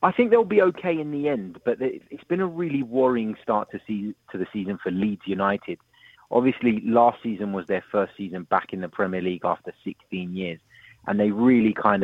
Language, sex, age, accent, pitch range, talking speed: English, male, 30-49, British, 95-115 Hz, 210 wpm